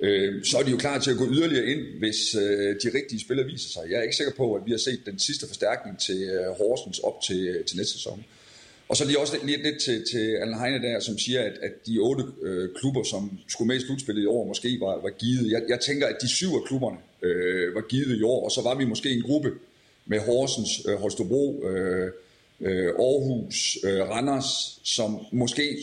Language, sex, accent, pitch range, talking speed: Danish, male, native, 105-140 Hz, 235 wpm